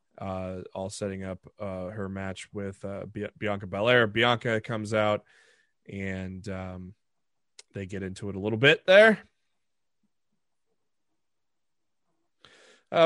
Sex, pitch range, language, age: male, 100-130 Hz, English, 20-39